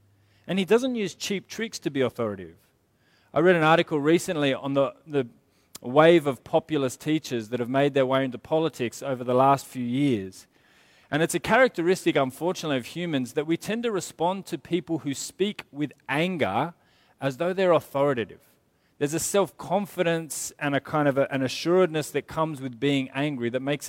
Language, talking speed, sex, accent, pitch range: English, 180 wpm, male, Australian, 125-165 Hz